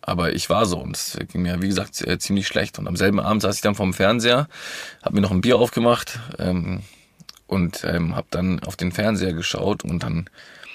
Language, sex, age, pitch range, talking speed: German, male, 20-39, 95-110 Hz, 220 wpm